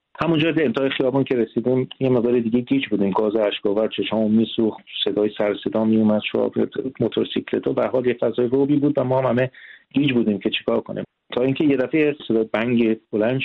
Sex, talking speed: male, 190 wpm